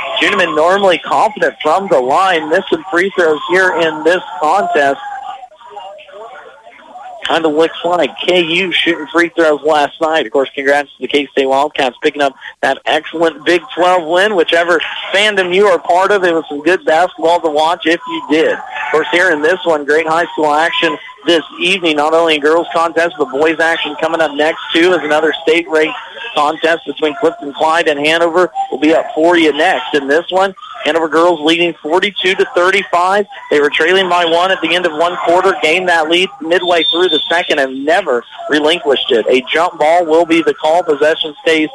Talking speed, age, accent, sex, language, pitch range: 190 wpm, 40-59, American, male, English, 155-190 Hz